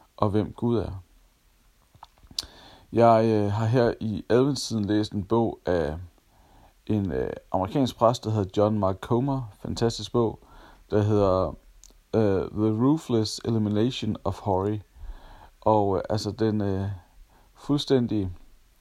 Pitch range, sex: 95-115 Hz, male